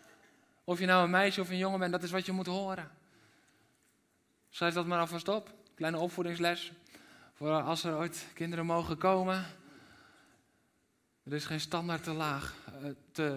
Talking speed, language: 160 wpm, Dutch